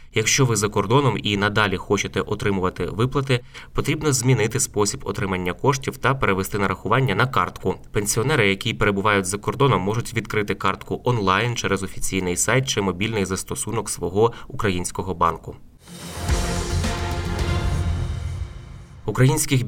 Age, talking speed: 20-39, 115 wpm